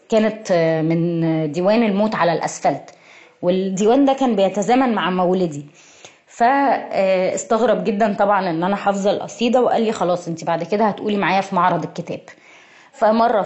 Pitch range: 175-225 Hz